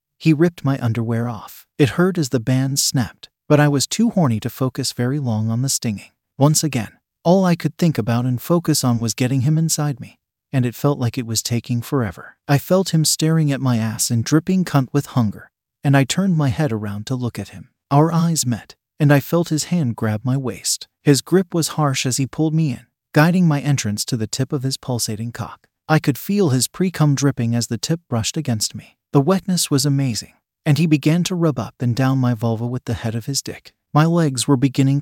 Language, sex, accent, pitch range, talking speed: English, male, American, 120-155 Hz, 230 wpm